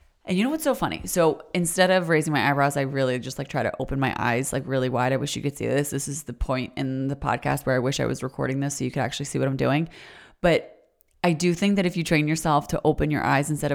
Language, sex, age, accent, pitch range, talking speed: English, female, 30-49, American, 140-175 Hz, 290 wpm